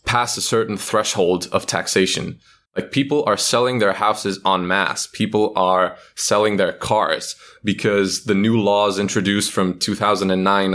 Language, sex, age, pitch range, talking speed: English, male, 20-39, 95-110 Hz, 145 wpm